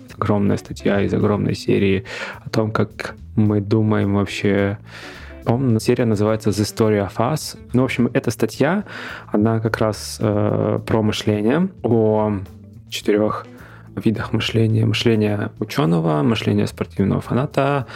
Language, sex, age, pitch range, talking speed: Russian, male, 20-39, 105-120 Hz, 125 wpm